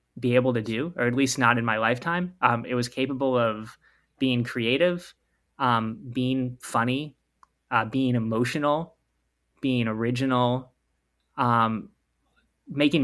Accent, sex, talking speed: American, male, 130 wpm